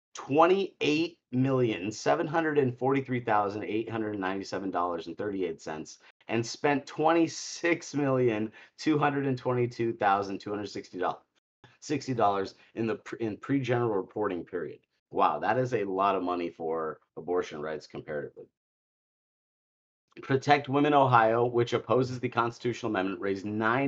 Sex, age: male, 30-49